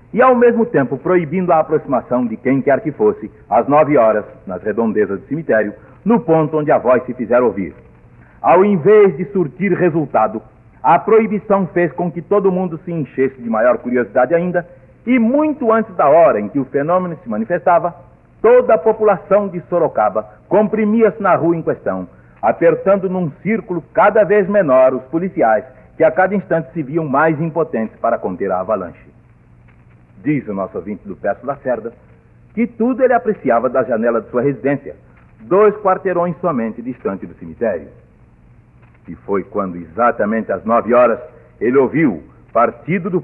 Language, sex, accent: Portuguese, male, Brazilian